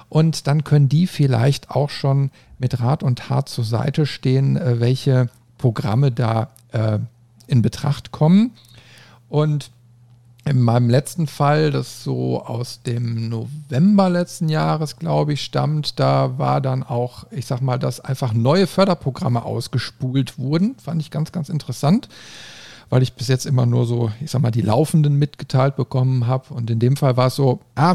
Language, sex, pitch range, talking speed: German, male, 125-150 Hz, 165 wpm